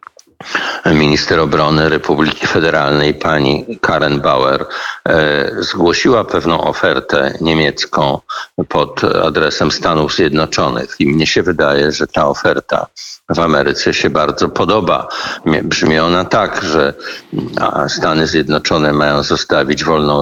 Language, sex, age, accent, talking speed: Polish, male, 50-69, native, 105 wpm